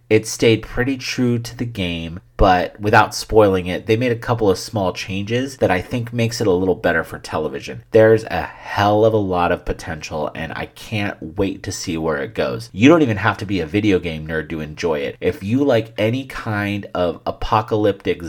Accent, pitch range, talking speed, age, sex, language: American, 95-120 Hz, 215 wpm, 30-49, male, English